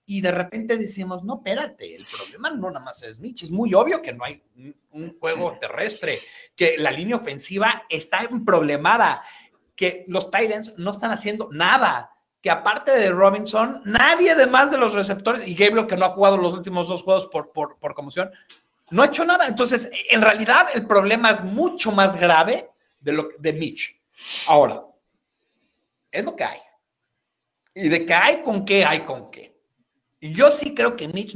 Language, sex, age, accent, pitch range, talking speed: Spanish, male, 40-59, Mexican, 165-235 Hz, 180 wpm